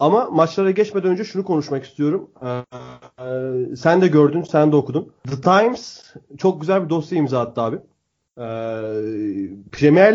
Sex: male